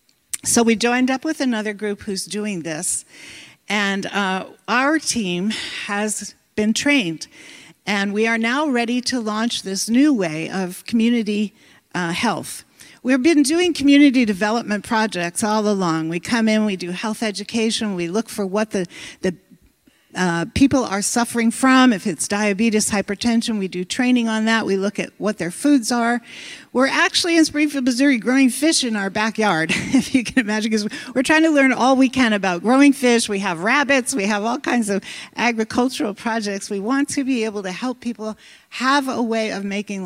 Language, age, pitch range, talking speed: English, 50-69, 200-255 Hz, 180 wpm